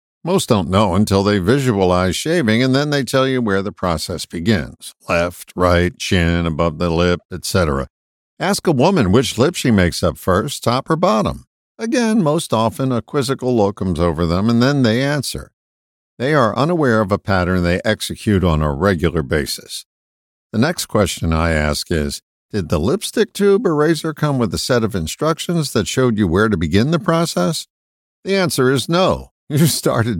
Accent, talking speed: American, 185 wpm